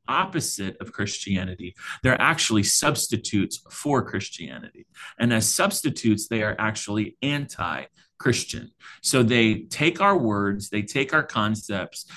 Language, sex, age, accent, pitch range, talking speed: English, male, 30-49, American, 110-135 Hz, 120 wpm